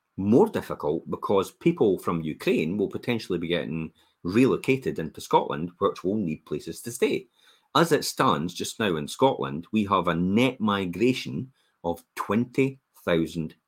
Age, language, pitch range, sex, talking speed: 40-59, English, 85-110 Hz, male, 145 wpm